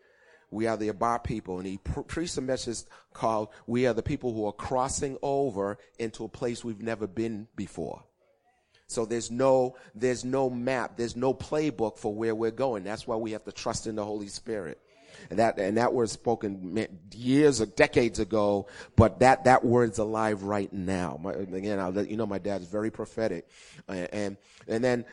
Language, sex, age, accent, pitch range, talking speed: English, male, 30-49, American, 105-130 Hz, 190 wpm